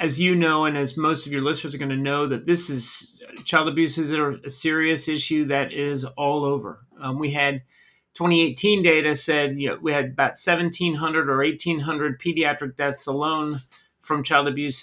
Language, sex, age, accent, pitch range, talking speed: English, male, 30-49, American, 140-170 Hz, 180 wpm